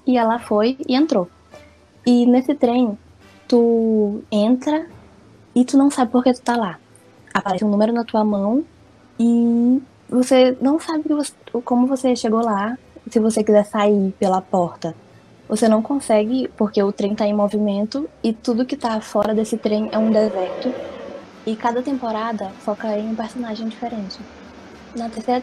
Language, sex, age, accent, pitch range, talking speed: Portuguese, female, 10-29, Brazilian, 200-245 Hz, 160 wpm